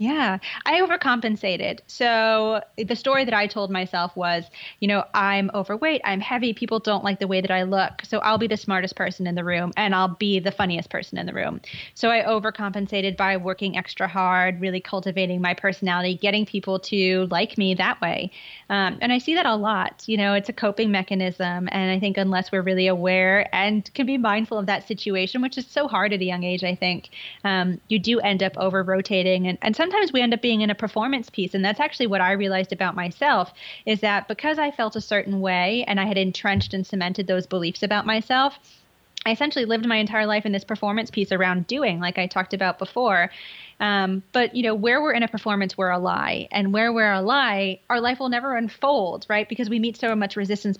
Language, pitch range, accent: English, 185-220 Hz, American